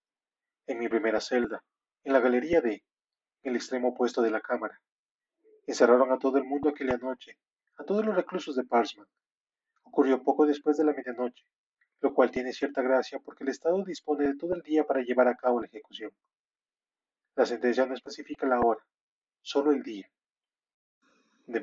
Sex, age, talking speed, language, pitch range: male, 30-49, 175 wpm, Spanish, 120-150 Hz